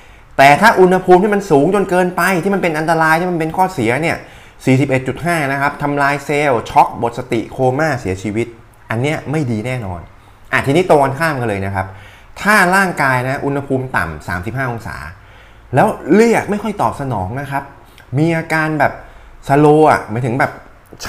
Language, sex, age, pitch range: Thai, male, 20-39, 110-160 Hz